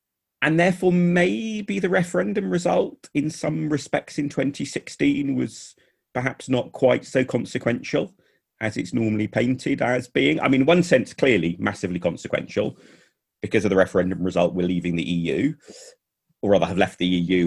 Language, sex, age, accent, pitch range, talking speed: English, male, 30-49, British, 95-135 Hz, 155 wpm